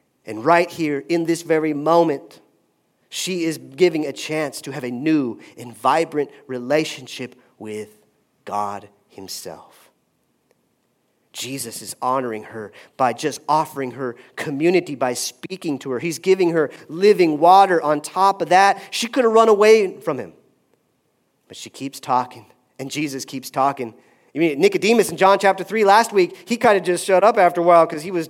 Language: English